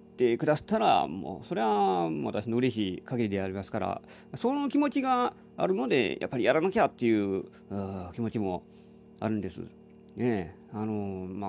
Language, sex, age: Japanese, male, 40-59